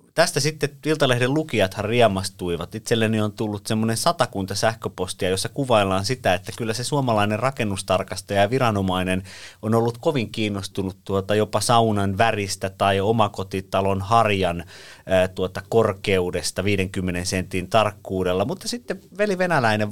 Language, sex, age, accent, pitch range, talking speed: Finnish, male, 30-49, native, 95-115 Hz, 130 wpm